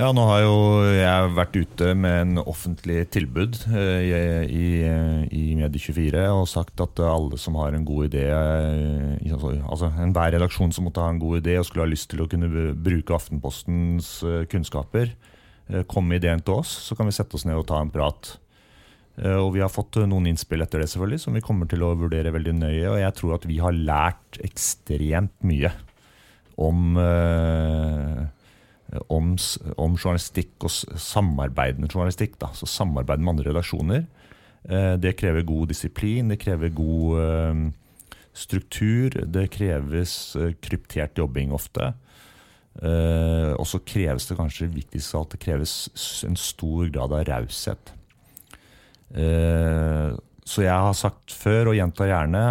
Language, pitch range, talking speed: English, 80-95 Hz, 145 wpm